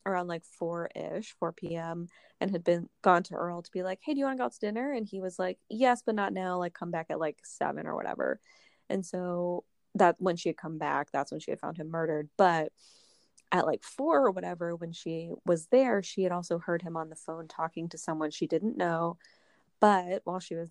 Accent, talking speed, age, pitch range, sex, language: American, 235 wpm, 20-39, 165-190 Hz, female, English